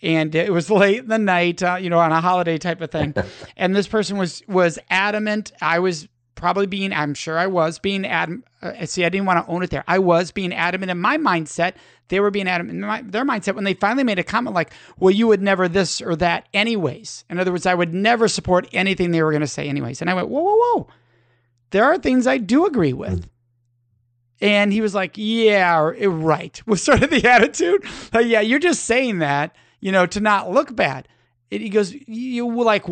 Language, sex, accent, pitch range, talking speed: English, male, American, 165-220 Hz, 230 wpm